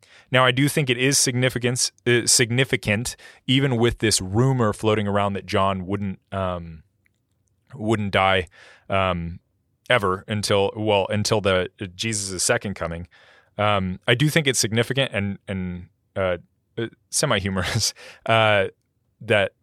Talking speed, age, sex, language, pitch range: 140 wpm, 30-49, male, English, 95-115 Hz